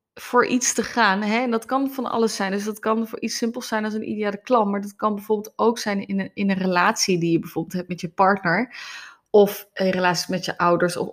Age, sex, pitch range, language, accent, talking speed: 20-39, female, 200-250 Hz, Dutch, Dutch, 260 wpm